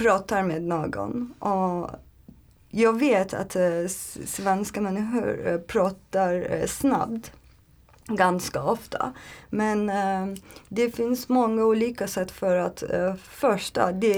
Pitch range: 185-230 Hz